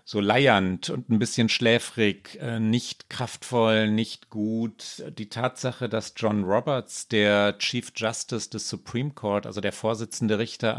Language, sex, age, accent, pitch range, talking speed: German, male, 40-59, German, 105-135 Hz, 140 wpm